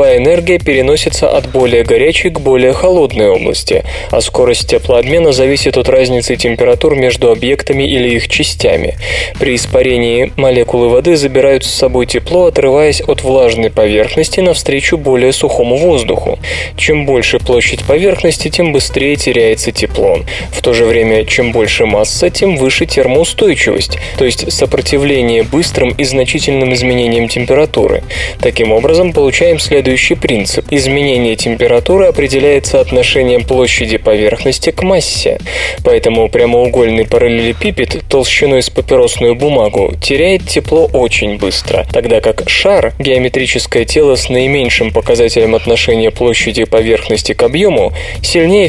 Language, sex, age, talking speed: Russian, male, 20-39, 125 wpm